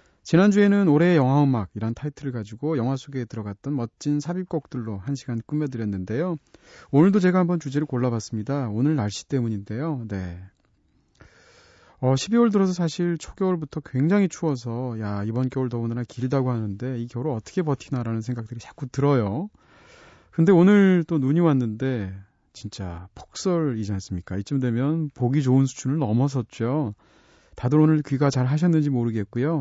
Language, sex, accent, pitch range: Korean, male, native, 115-155 Hz